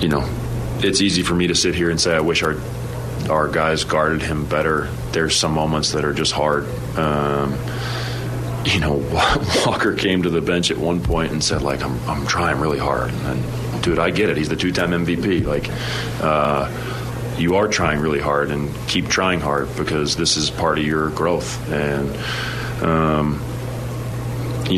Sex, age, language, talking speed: male, 30-49, English, 185 wpm